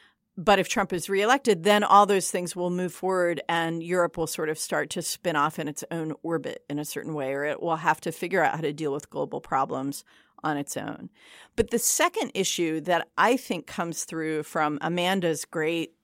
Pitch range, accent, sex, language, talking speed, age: 165-210 Hz, American, female, English, 215 wpm, 40-59